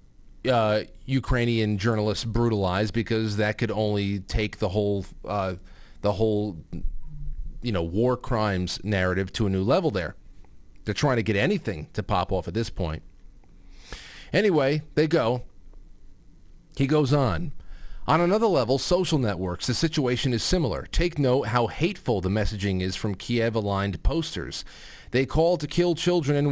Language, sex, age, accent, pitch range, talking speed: English, male, 40-59, American, 100-130 Hz, 150 wpm